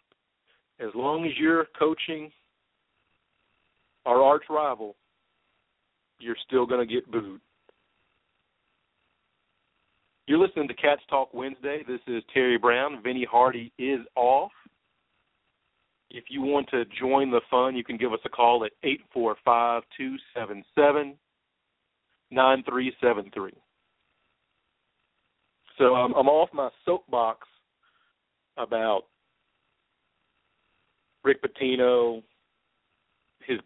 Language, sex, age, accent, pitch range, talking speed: English, male, 50-69, American, 120-145 Hz, 95 wpm